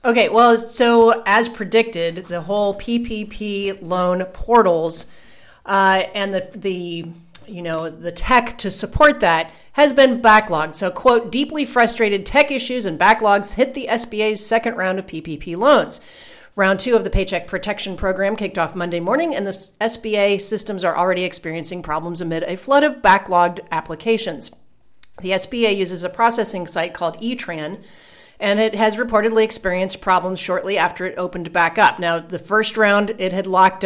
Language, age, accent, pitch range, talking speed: English, 40-59, American, 175-225 Hz, 160 wpm